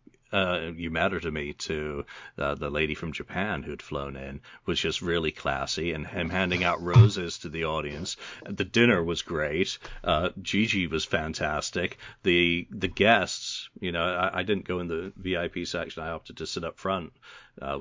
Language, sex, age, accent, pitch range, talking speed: English, male, 40-59, American, 85-120 Hz, 180 wpm